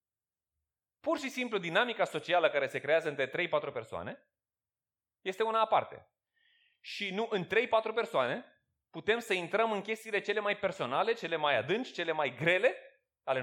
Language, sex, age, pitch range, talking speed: Romanian, male, 30-49, 130-215 Hz, 150 wpm